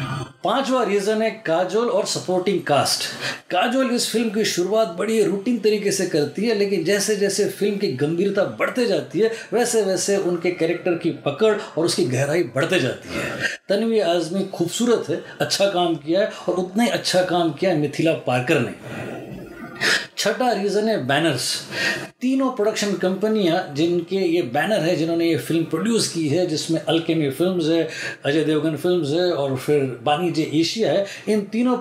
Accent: native